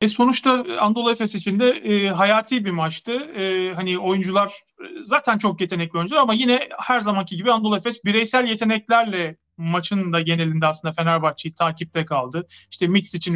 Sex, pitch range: male, 170-220 Hz